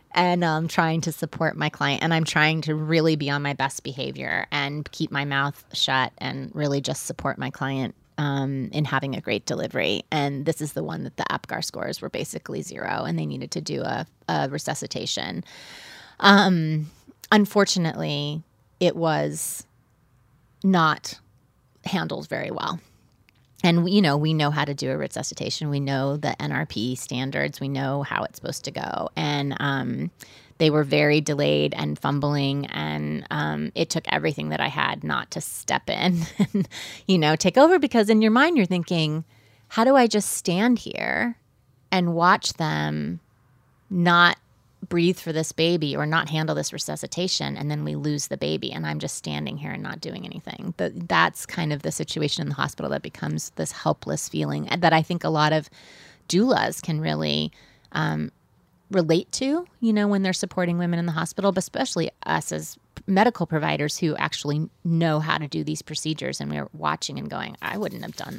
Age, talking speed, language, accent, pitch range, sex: 30-49, 180 wpm, English, American, 130-170 Hz, female